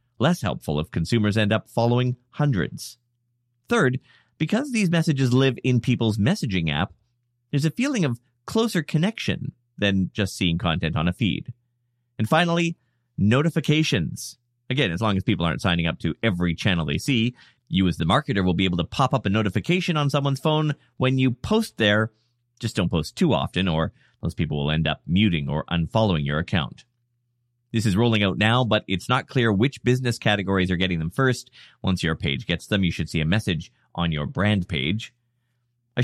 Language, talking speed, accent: English, 185 wpm, American